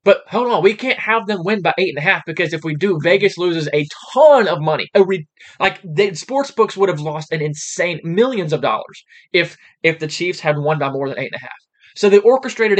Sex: male